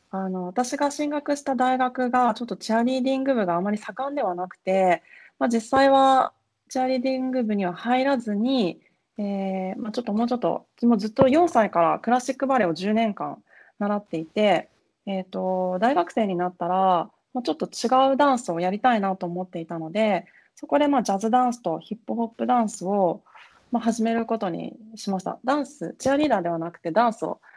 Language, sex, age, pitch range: English, female, 20-39, 185-255 Hz